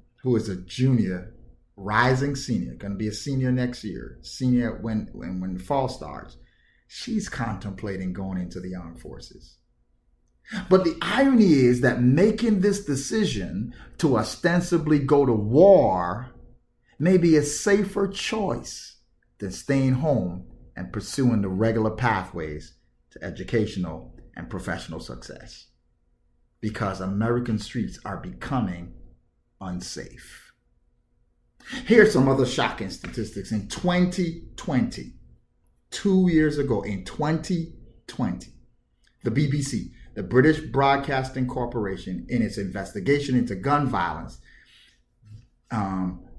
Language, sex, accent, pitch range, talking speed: English, male, American, 95-155 Hz, 115 wpm